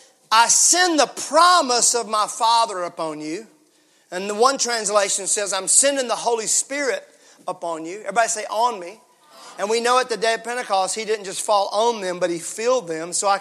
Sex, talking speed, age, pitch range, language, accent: male, 200 wpm, 40-59, 195-295 Hz, English, American